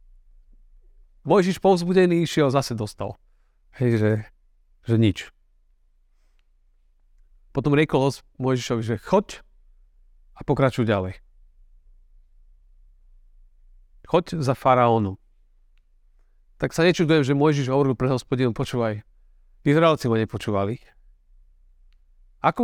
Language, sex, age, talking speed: Slovak, male, 40-59, 90 wpm